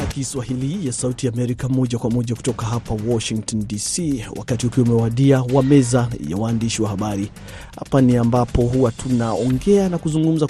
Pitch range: 115-140 Hz